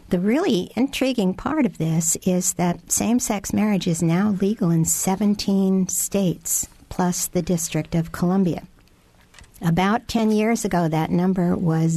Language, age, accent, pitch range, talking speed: English, 60-79, American, 165-195 Hz, 140 wpm